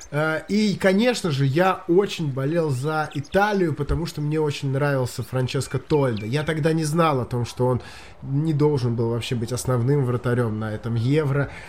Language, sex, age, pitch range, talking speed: Russian, male, 20-39, 145-205 Hz, 170 wpm